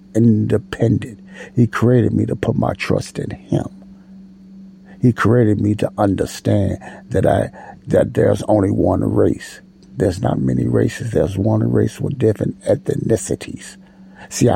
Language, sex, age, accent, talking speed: English, male, 60-79, American, 135 wpm